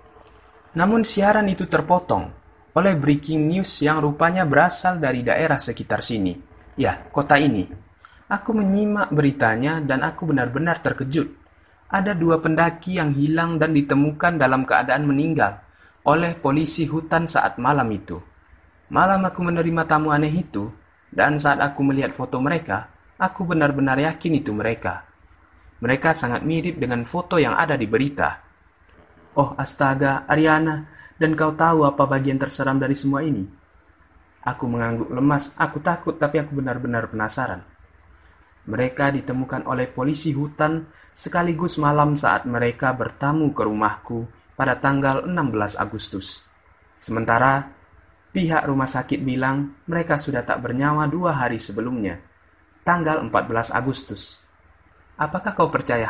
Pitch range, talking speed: 105-155 Hz, 130 wpm